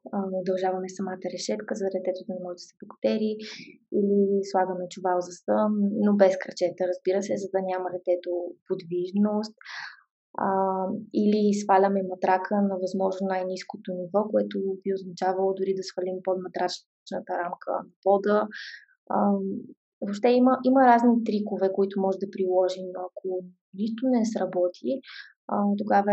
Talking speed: 130 wpm